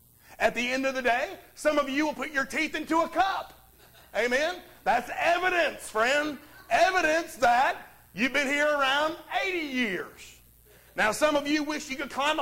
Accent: American